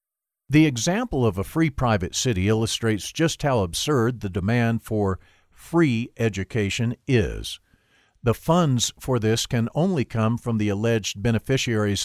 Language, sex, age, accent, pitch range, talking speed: English, male, 50-69, American, 110-140 Hz, 140 wpm